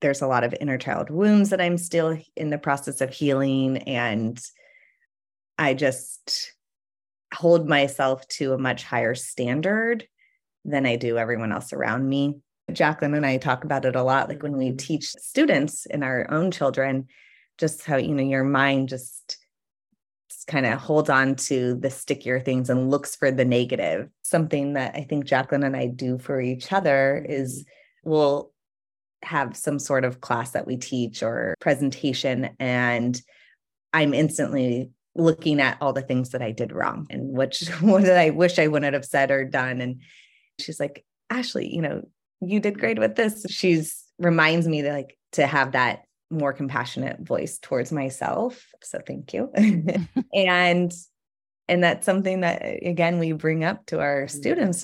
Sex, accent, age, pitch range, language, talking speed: female, American, 30-49, 130-165 Hz, English, 170 wpm